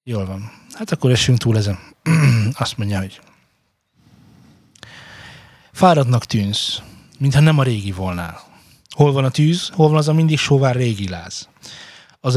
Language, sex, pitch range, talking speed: Hungarian, male, 110-150 Hz, 145 wpm